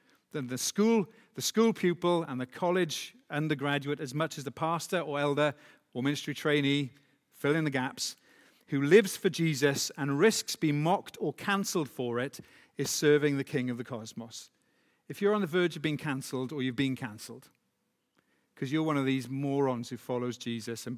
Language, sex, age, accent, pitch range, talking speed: English, male, 50-69, British, 125-155 Hz, 185 wpm